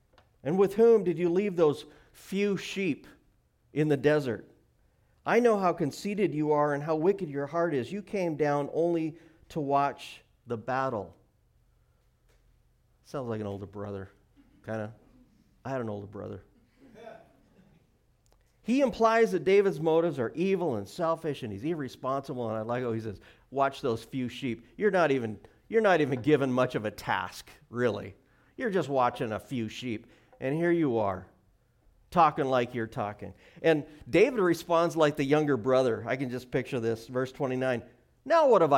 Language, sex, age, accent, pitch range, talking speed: English, male, 50-69, American, 120-175 Hz, 165 wpm